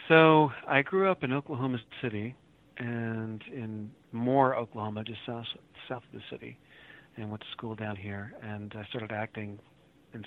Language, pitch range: English, 105-130 Hz